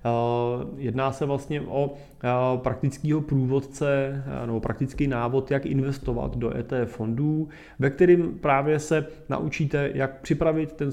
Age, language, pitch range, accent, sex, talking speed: 30-49, Czech, 120-140 Hz, native, male, 115 wpm